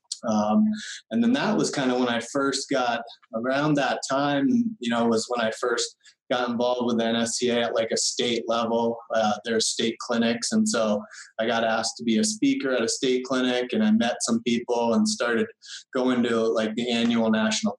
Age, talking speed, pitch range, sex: 20-39, 200 wpm, 115-130 Hz, male